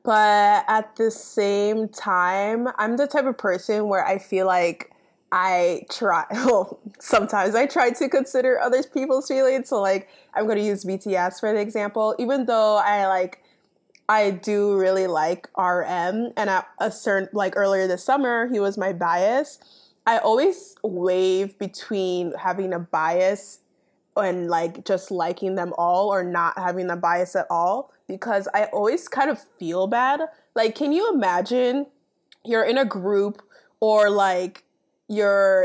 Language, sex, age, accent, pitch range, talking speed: English, female, 20-39, American, 190-255 Hz, 160 wpm